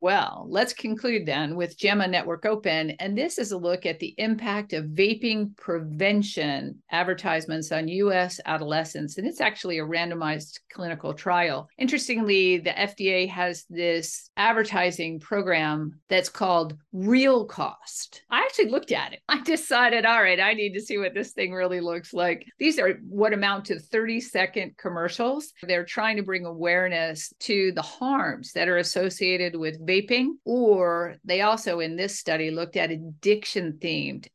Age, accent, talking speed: 50-69, American, 155 wpm